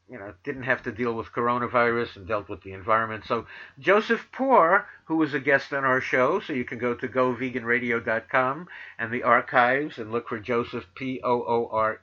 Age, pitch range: 50-69, 120-160 Hz